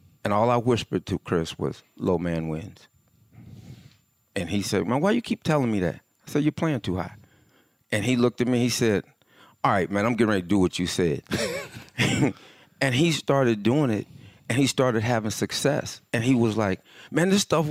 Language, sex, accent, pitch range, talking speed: English, male, American, 100-130 Hz, 205 wpm